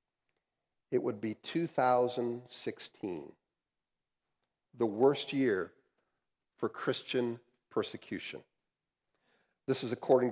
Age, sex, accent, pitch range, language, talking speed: 50-69, male, American, 125-180 Hz, English, 75 wpm